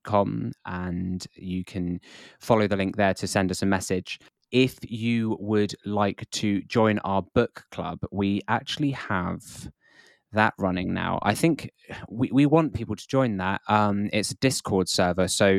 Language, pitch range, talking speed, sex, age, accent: English, 95-115 Hz, 160 wpm, male, 20-39, British